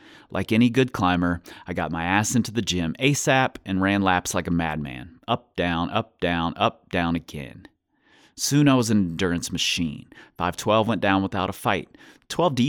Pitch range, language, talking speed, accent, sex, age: 90-130 Hz, English, 180 wpm, American, male, 30-49